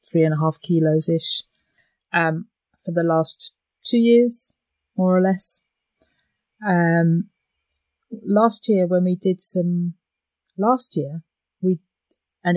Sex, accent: female, British